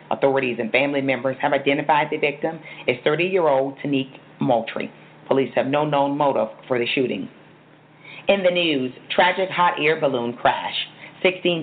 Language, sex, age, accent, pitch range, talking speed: English, female, 40-59, American, 140-175 Hz, 150 wpm